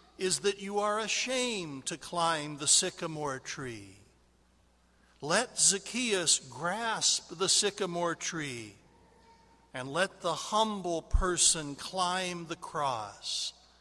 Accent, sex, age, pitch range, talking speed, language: American, male, 60-79, 125-190 Hz, 105 wpm, English